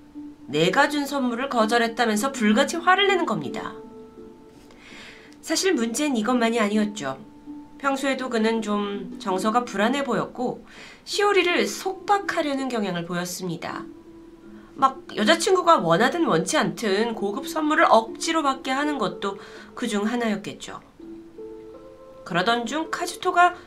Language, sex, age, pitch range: Korean, female, 30-49, 210-295 Hz